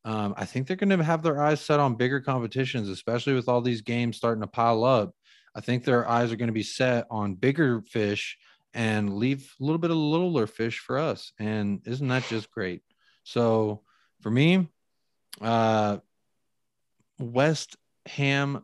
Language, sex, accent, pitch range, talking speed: English, male, American, 100-125 Hz, 175 wpm